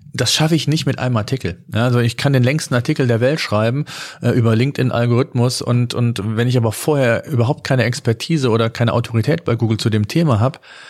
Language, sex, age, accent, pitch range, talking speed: German, male, 40-59, German, 115-135 Hz, 210 wpm